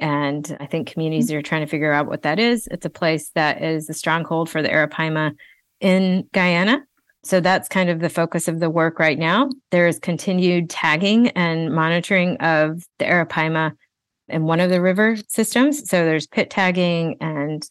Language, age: English, 30-49